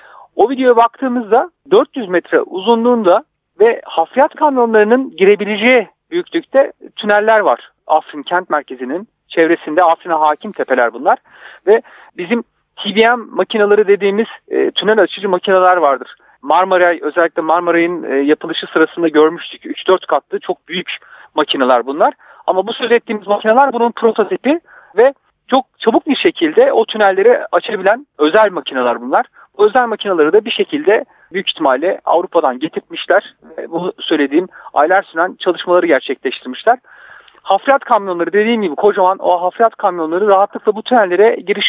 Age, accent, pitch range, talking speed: 40-59, native, 175-270 Hz, 130 wpm